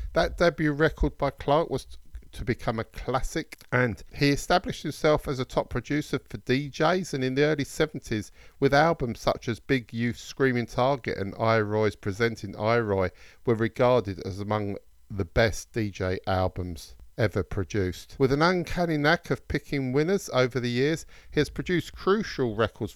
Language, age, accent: English, 50-69, British